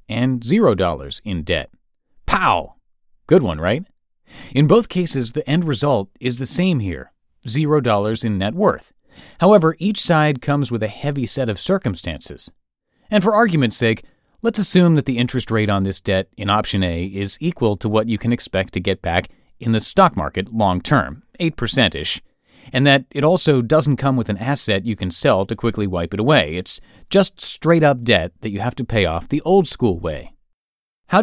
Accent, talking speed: American, 185 wpm